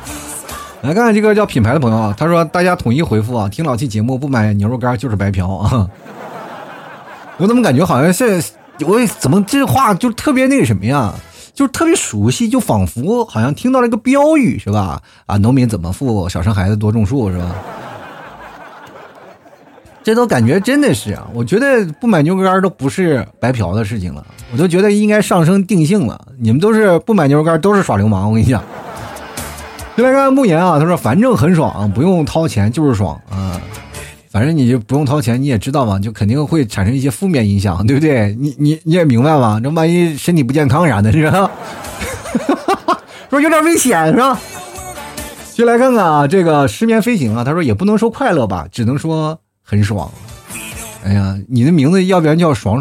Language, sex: Chinese, male